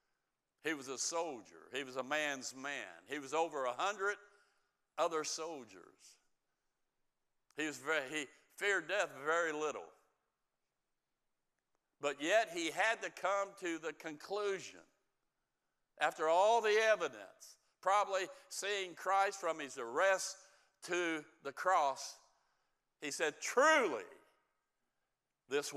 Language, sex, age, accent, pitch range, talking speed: English, male, 60-79, American, 145-195 Hz, 110 wpm